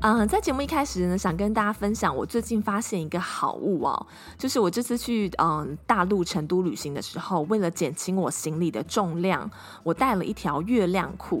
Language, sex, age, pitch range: Chinese, female, 20-39, 165-220 Hz